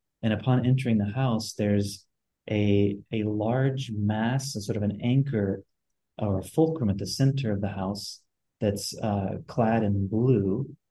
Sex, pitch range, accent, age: male, 100-120 Hz, American, 30-49